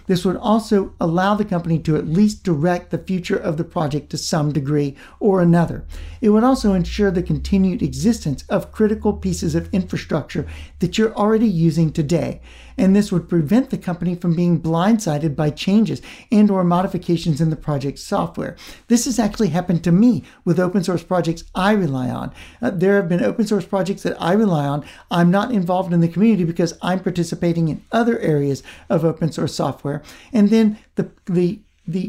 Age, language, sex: 60-79, English, male